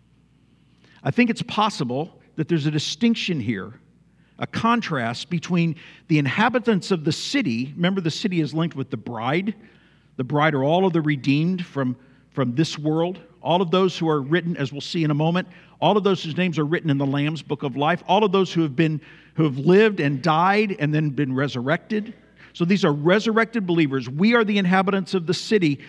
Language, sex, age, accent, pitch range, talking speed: English, male, 50-69, American, 155-195 Hz, 200 wpm